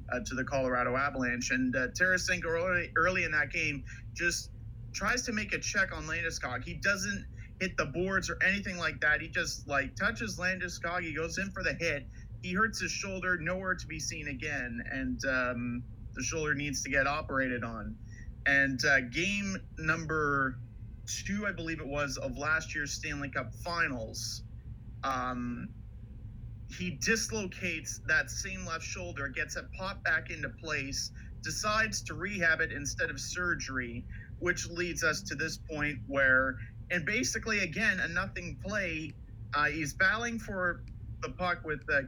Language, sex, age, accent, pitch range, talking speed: English, male, 30-49, American, 115-165 Hz, 165 wpm